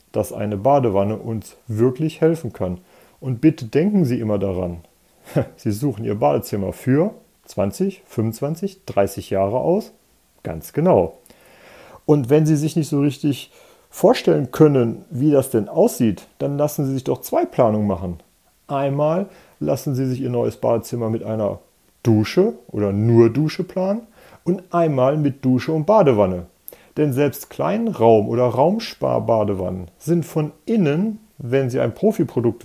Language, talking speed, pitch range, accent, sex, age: German, 145 wpm, 110-160 Hz, German, male, 40-59